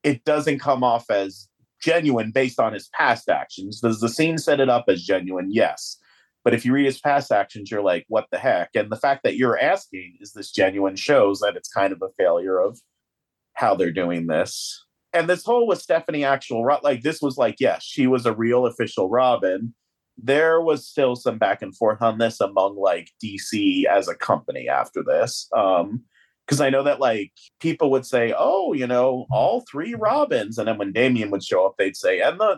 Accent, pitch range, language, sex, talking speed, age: American, 110-160 Hz, English, male, 210 wpm, 30-49